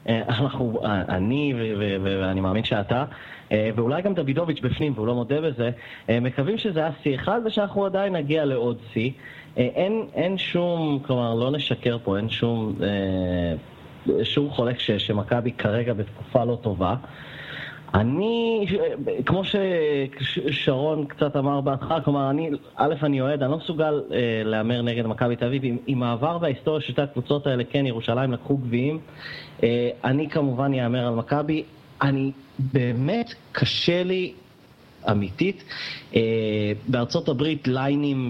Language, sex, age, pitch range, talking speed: Hebrew, male, 30-49, 115-145 Hz, 140 wpm